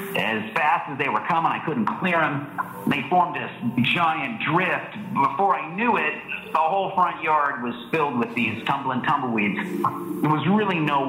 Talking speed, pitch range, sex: 180 wpm, 120-175 Hz, male